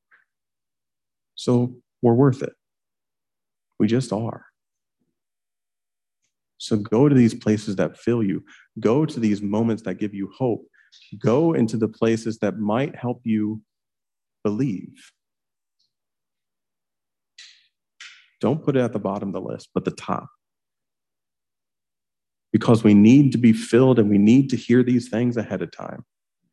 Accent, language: American, English